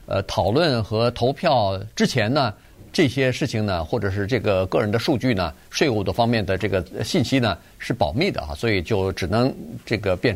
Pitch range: 100-130 Hz